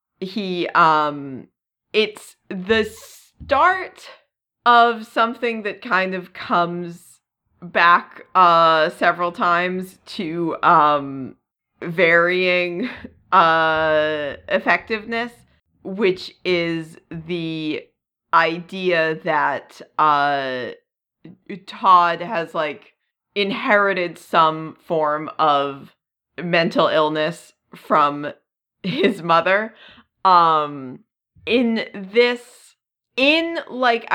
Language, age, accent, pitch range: English, 30-49, American, 160-220 Hz